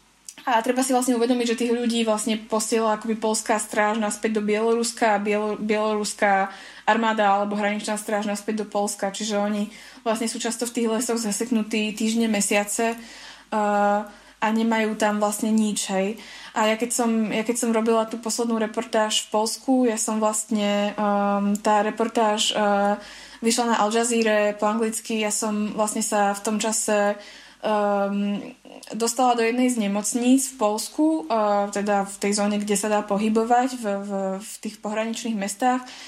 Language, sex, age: Slovak, female, 20-39